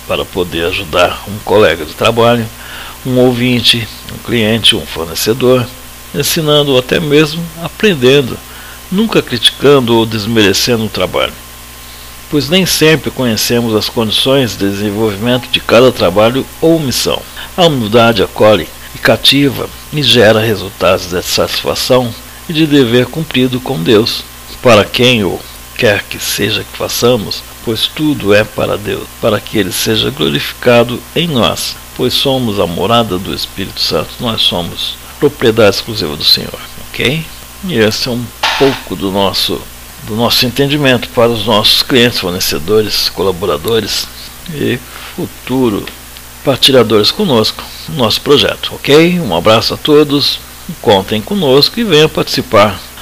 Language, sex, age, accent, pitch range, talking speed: Portuguese, male, 60-79, Brazilian, 95-130 Hz, 135 wpm